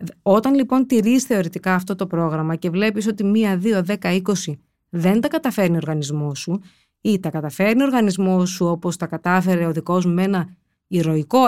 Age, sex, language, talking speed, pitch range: 20-39, female, Greek, 180 wpm, 175-225 Hz